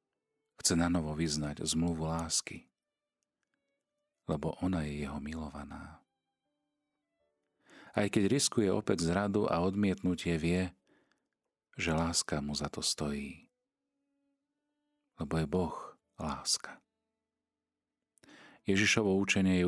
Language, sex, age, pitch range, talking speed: Slovak, male, 40-59, 80-95 Hz, 95 wpm